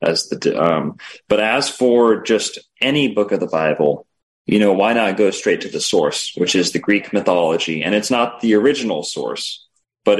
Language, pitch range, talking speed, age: English, 90-110 Hz, 195 wpm, 30-49